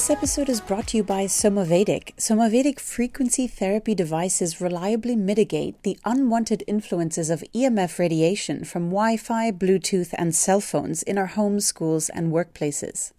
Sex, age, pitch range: female, 30-49, 180-225 Hz